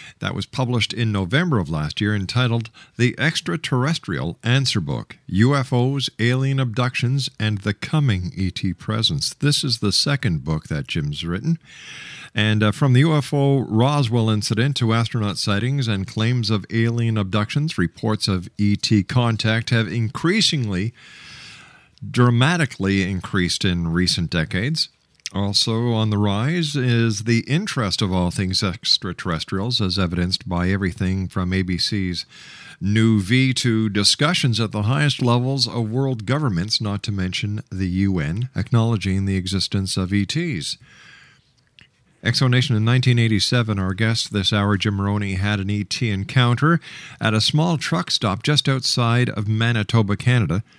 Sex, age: male, 50-69